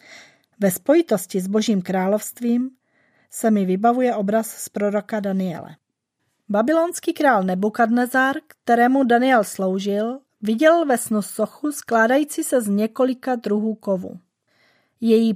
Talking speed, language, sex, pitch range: 110 wpm, Czech, female, 210-255 Hz